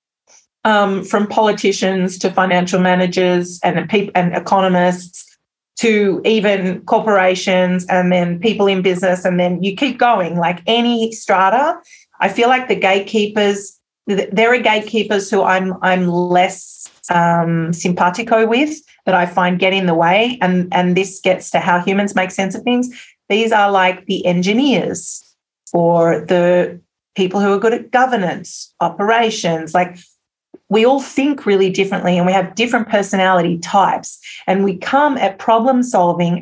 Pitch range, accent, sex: 185-230 Hz, Australian, female